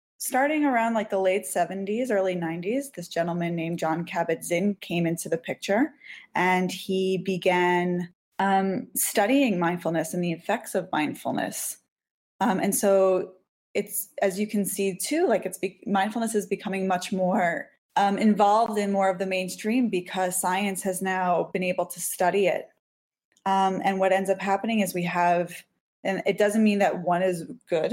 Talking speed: 170 wpm